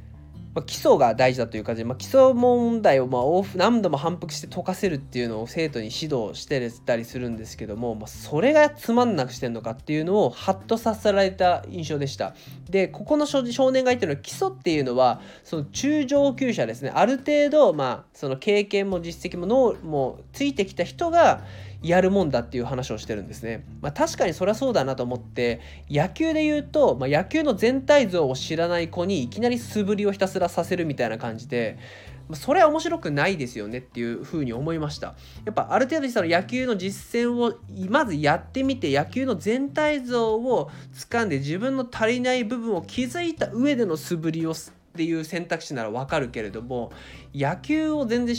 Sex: male